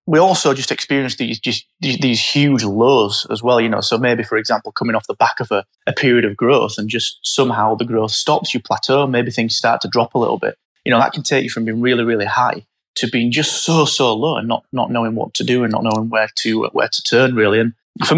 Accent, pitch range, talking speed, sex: British, 110-130 Hz, 260 wpm, male